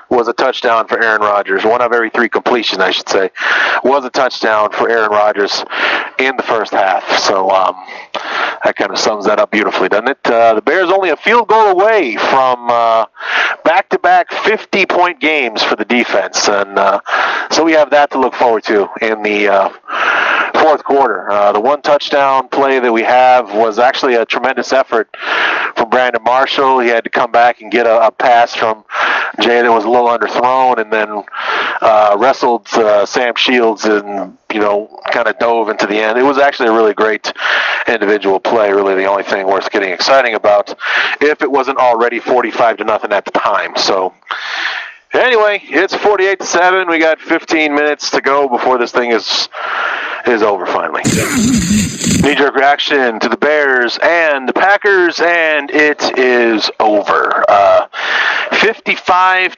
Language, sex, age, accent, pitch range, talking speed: English, male, 40-59, American, 110-160 Hz, 175 wpm